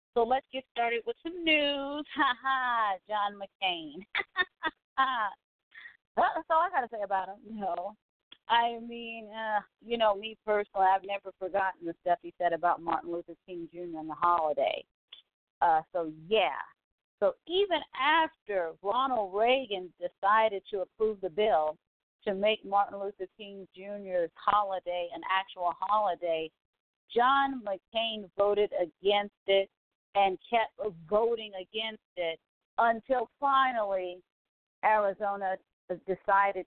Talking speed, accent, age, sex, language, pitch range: 135 wpm, American, 40-59, female, English, 180-230 Hz